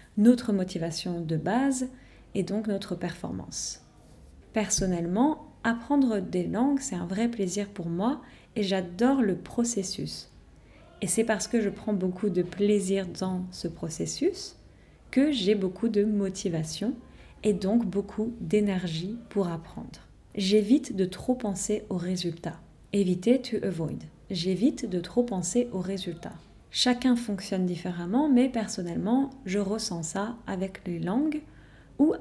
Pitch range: 180-230 Hz